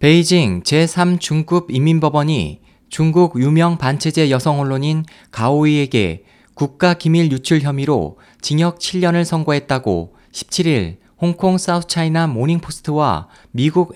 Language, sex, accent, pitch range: Korean, male, native, 145-175 Hz